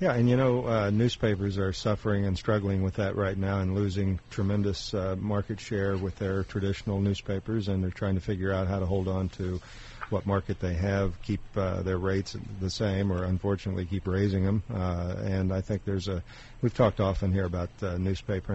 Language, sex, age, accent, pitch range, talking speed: English, male, 50-69, American, 95-110 Hz, 210 wpm